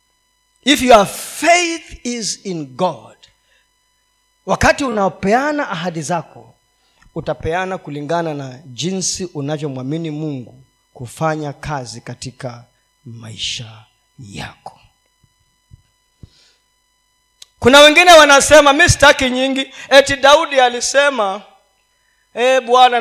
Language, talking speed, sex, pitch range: Swahili, 85 wpm, male, 180-290 Hz